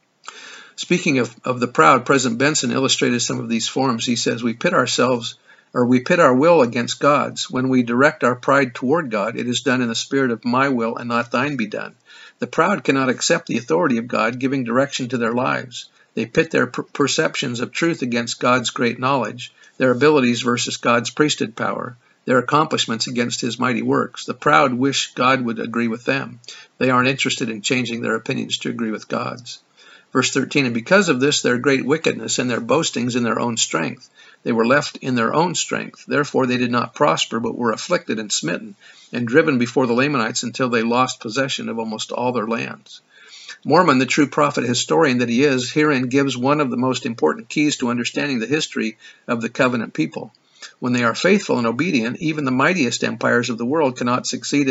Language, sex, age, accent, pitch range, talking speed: English, male, 50-69, American, 120-135 Hz, 205 wpm